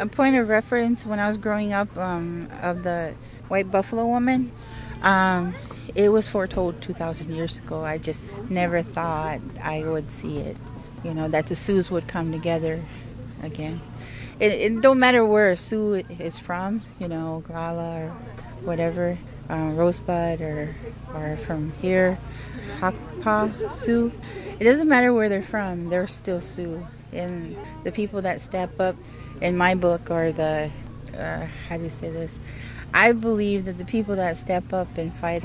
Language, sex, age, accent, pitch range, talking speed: English, female, 30-49, American, 140-185 Hz, 165 wpm